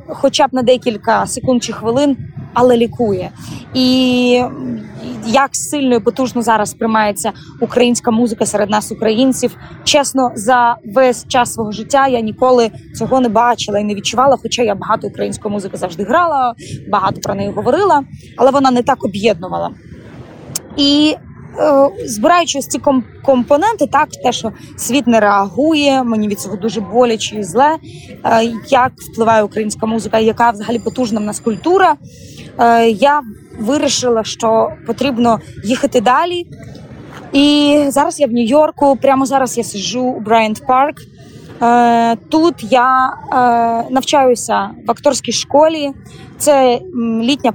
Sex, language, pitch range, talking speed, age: female, Ukrainian, 220-270 Hz, 130 wpm, 20-39